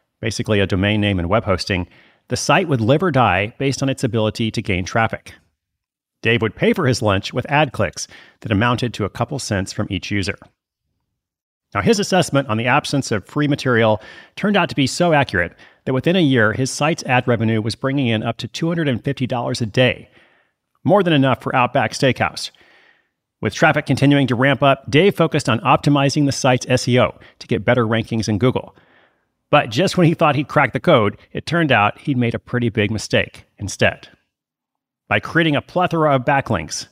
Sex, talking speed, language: male, 195 wpm, English